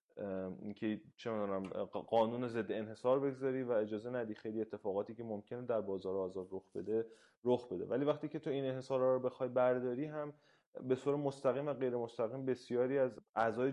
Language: Persian